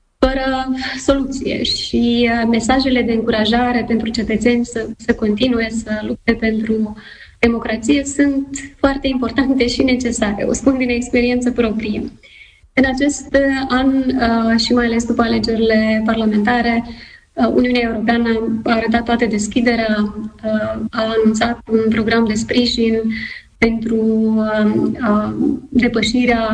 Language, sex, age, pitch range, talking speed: Romanian, female, 20-39, 215-235 Hz, 110 wpm